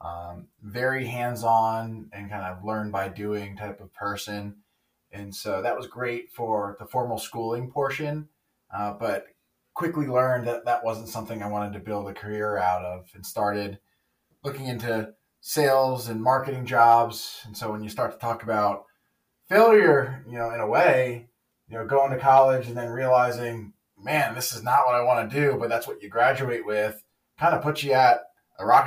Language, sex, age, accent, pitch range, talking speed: English, male, 20-39, American, 105-120 Hz, 185 wpm